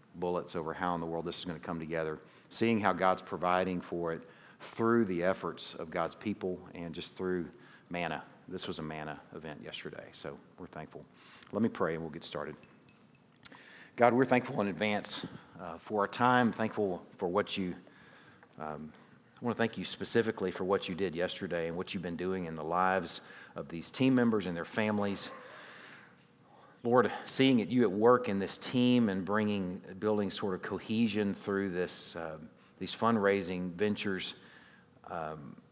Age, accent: 40-59, American